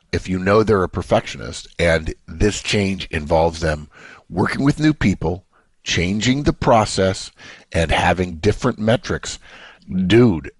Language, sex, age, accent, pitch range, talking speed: English, male, 50-69, American, 80-105 Hz, 130 wpm